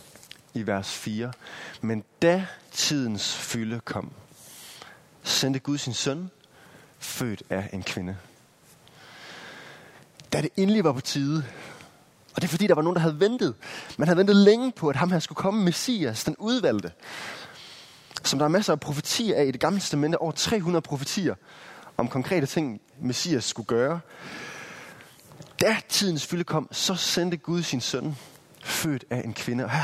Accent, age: native, 20-39